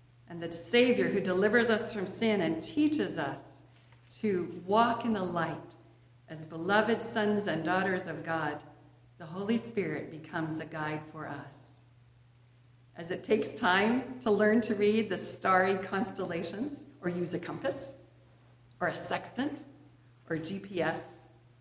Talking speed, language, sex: 140 wpm, English, female